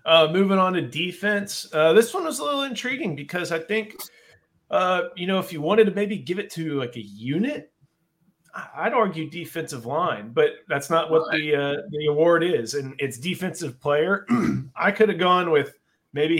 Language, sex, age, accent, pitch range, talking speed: English, male, 30-49, American, 130-170 Hz, 190 wpm